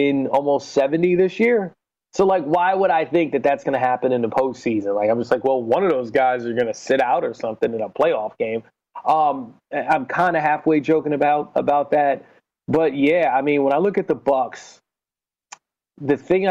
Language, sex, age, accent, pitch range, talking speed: English, male, 30-49, American, 120-165 Hz, 215 wpm